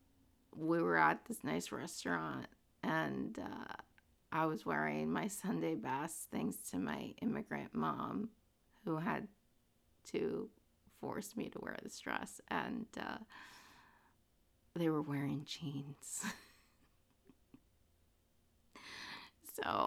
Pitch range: 140-180 Hz